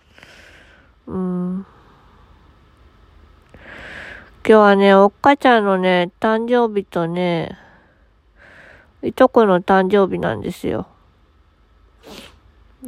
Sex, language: female, Japanese